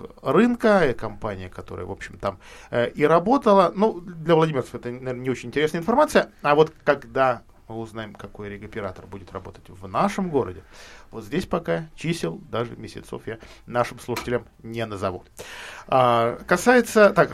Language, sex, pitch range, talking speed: Russian, male, 115-180 Hz, 155 wpm